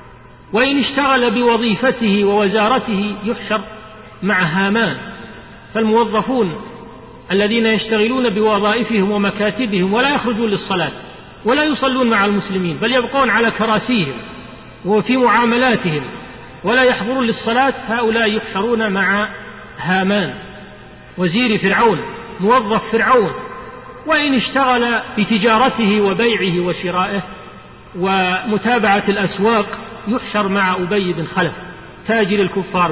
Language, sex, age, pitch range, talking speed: Arabic, male, 40-59, 180-230 Hz, 90 wpm